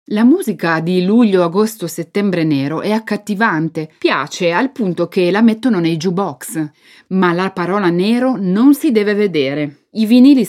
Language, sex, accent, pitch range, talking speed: Italian, female, native, 170-230 Hz, 145 wpm